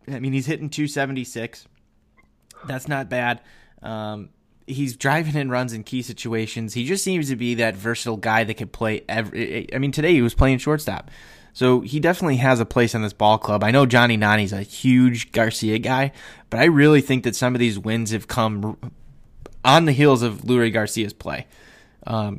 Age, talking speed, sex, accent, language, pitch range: 20-39, 200 wpm, male, American, English, 105-130 Hz